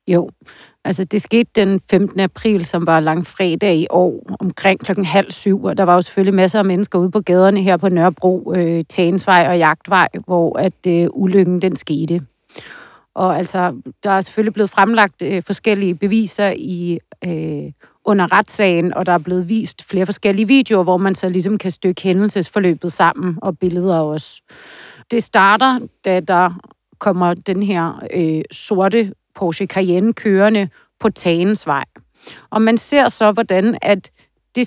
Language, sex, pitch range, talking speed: Danish, female, 180-215 Hz, 165 wpm